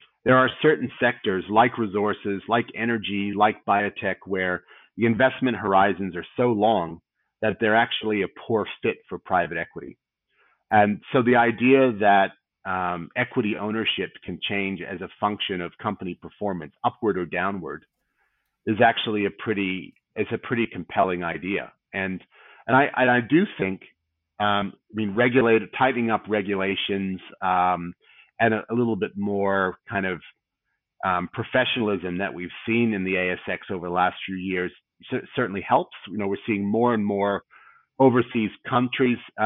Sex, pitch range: male, 95-115 Hz